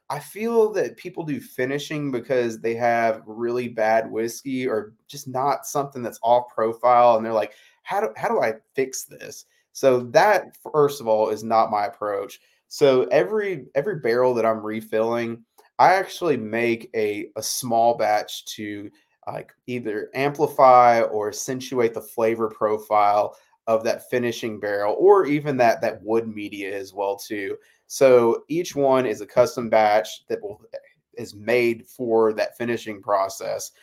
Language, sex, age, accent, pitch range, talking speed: English, male, 20-39, American, 110-130 Hz, 160 wpm